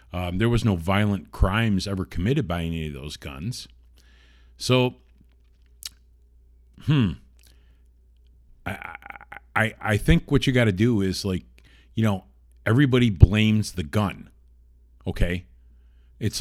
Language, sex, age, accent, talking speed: English, male, 50-69, American, 125 wpm